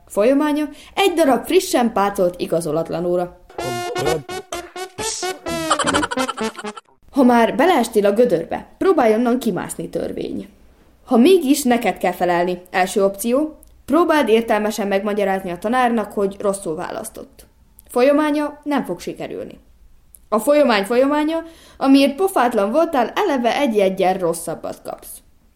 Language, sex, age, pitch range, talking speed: Hungarian, female, 20-39, 195-280 Hz, 105 wpm